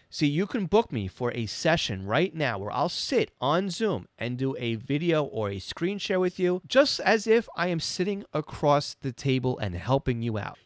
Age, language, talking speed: 30-49, English, 215 wpm